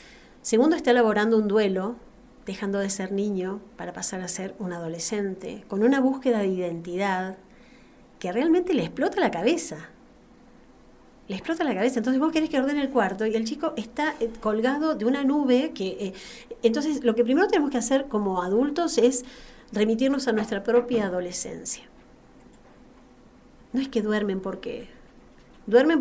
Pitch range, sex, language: 195-265 Hz, female, Spanish